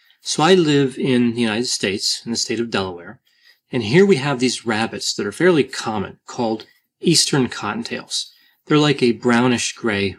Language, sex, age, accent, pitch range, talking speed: English, male, 30-49, American, 115-150 Hz, 170 wpm